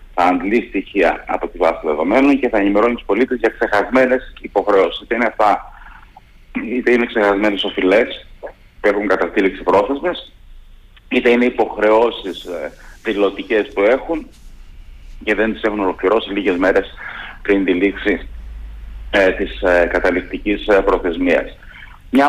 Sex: male